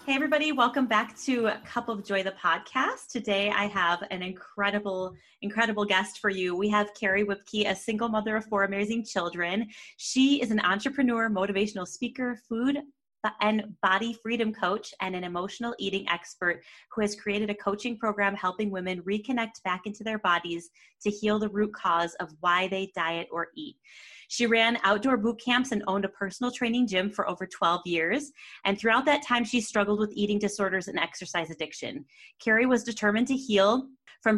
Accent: American